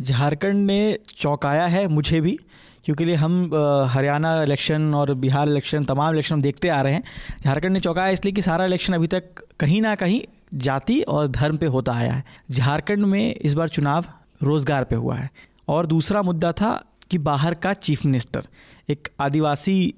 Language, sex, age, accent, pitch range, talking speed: Hindi, male, 20-39, native, 150-195 Hz, 175 wpm